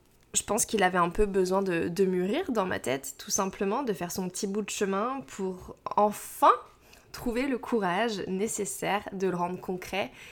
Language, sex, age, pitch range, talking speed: French, female, 20-39, 180-220 Hz, 185 wpm